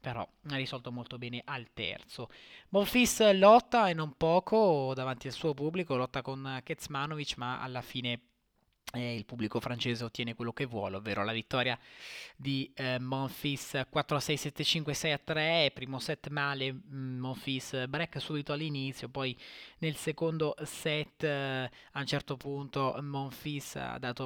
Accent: native